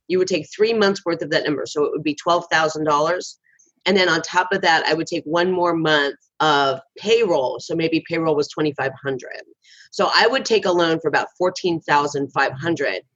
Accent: American